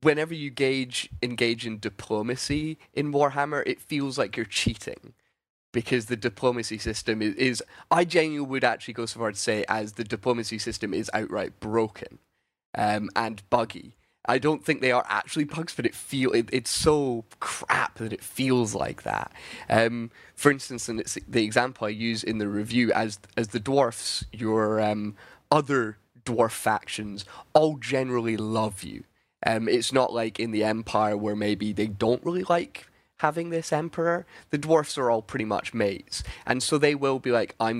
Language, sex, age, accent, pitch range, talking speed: English, male, 10-29, British, 110-135 Hz, 180 wpm